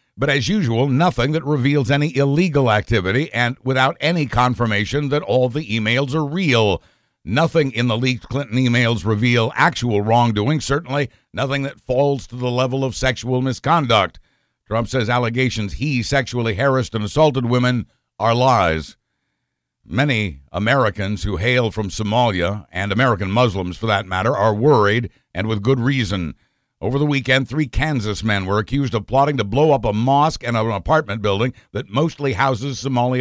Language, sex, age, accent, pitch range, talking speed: English, male, 60-79, American, 110-140 Hz, 165 wpm